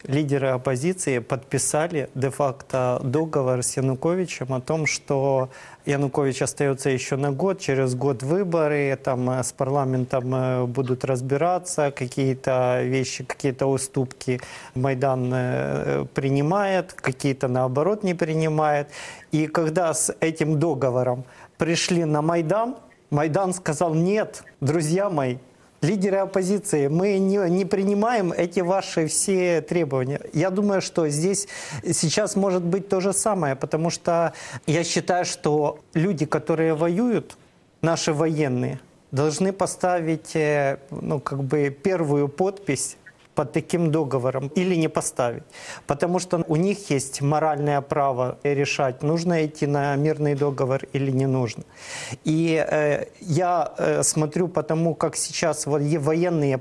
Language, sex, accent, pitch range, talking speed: Russian, male, native, 135-170 Hz, 120 wpm